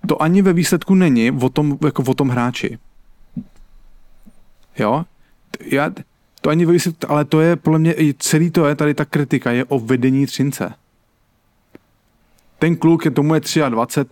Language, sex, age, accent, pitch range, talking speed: English, male, 30-49, Czech, 120-155 Hz, 160 wpm